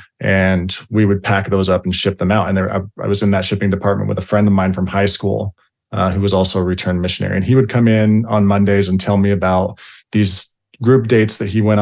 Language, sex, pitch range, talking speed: English, male, 95-115 Hz, 255 wpm